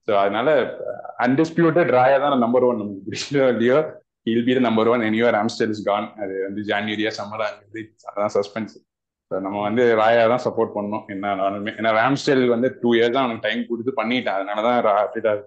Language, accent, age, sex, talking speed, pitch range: Tamil, native, 20-39, male, 45 wpm, 105-135 Hz